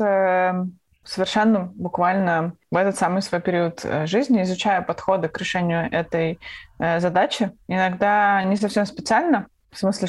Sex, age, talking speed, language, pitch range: female, 20-39, 125 wpm, Russian, 175-210 Hz